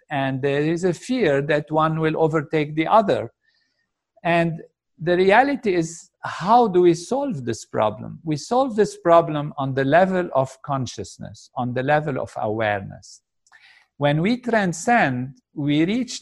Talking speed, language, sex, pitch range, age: 150 wpm, English, male, 135-185 Hz, 50-69